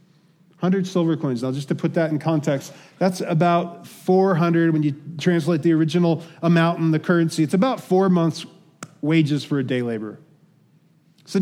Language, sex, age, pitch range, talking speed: English, male, 40-59, 160-185 Hz, 170 wpm